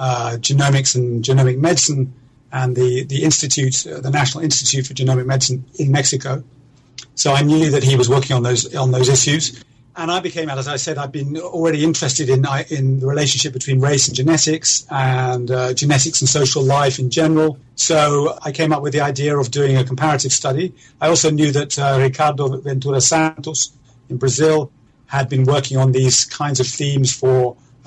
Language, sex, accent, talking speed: English, male, British, 185 wpm